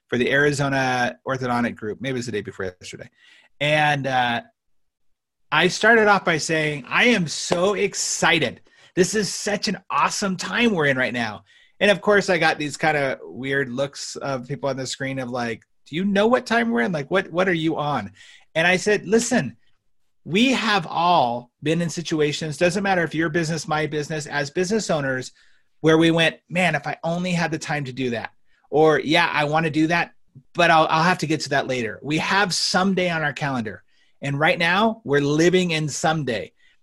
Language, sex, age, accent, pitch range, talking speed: English, male, 30-49, American, 135-185 Hz, 200 wpm